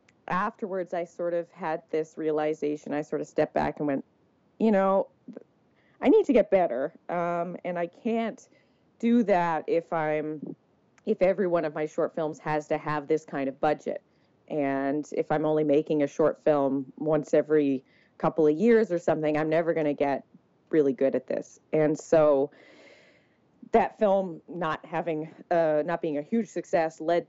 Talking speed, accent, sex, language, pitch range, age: 175 wpm, American, female, English, 145-170 Hz, 30-49